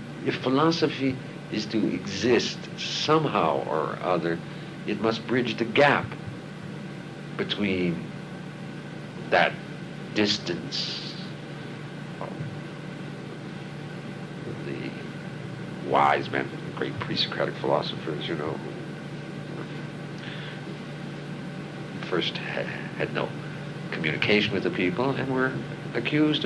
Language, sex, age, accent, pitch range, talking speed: English, male, 60-79, American, 110-160 Hz, 85 wpm